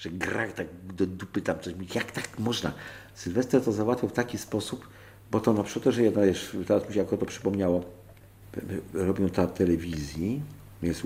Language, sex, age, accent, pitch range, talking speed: Polish, male, 50-69, native, 90-120 Hz, 175 wpm